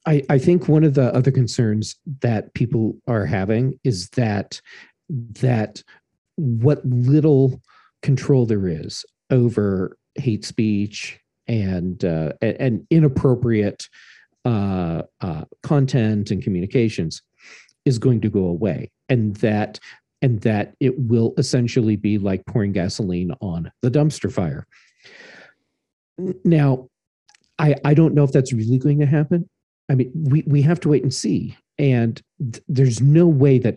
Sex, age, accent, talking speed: male, 50-69, American, 140 wpm